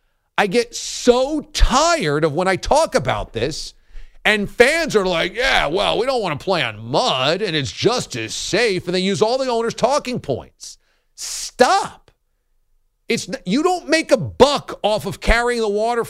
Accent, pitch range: American, 170-250 Hz